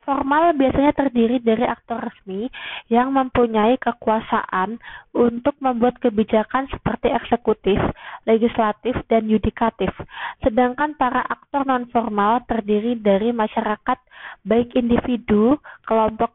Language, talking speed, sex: Indonesian, 100 wpm, female